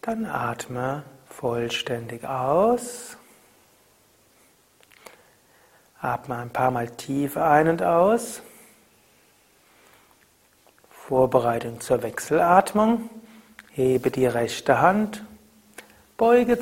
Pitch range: 135-210 Hz